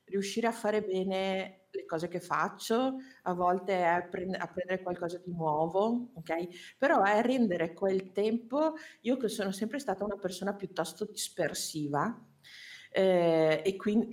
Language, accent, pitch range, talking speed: Italian, native, 165-210 Hz, 140 wpm